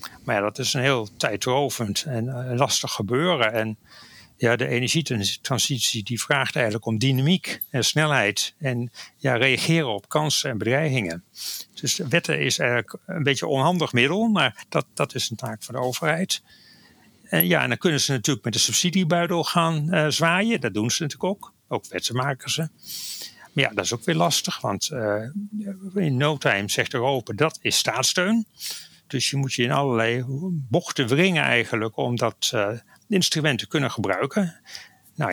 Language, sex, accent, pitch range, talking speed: Dutch, male, Dutch, 120-160 Hz, 175 wpm